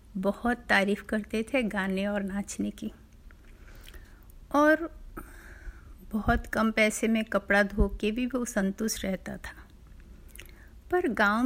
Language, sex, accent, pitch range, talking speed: Hindi, female, native, 200-265 Hz, 120 wpm